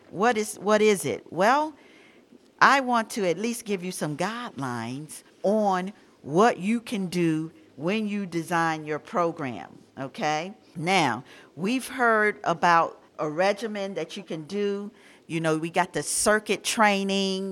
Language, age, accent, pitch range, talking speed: English, 50-69, American, 160-215 Hz, 145 wpm